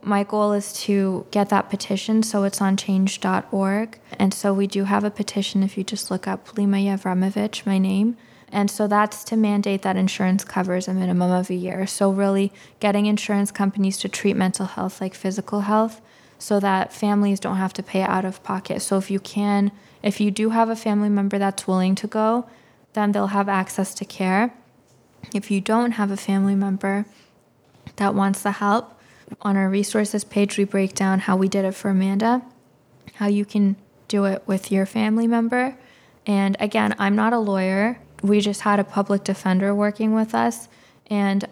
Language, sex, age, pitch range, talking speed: English, female, 20-39, 190-210 Hz, 190 wpm